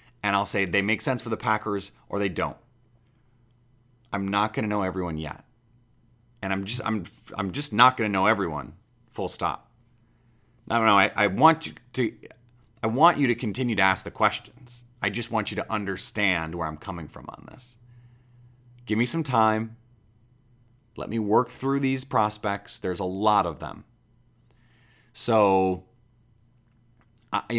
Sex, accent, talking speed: male, American, 165 wpm